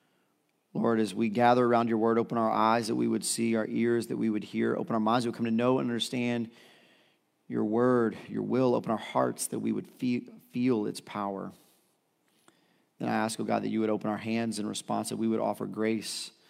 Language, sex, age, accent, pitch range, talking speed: English, male, 40-59, American, 120-180 Hz, 225 wpm